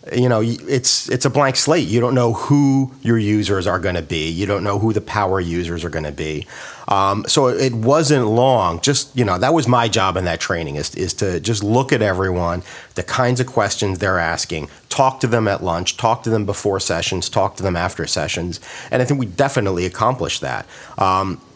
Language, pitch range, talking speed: English, 95-130 Hz, 215 wpm